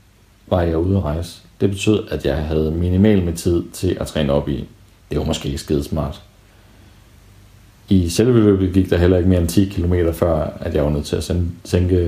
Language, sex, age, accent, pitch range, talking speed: Danish, male, 40-59, native, 90-105 Hz, 205 wpm